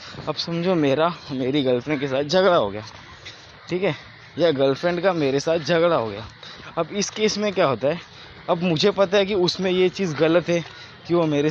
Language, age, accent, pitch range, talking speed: Hindi, 20-39, native, 130-175 Hz, 210 wpm